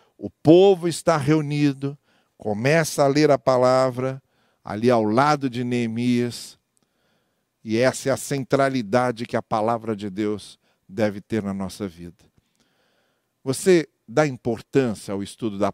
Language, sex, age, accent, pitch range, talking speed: German, male, 50-69, Brazilian, 120-170 Hz, 135 wpm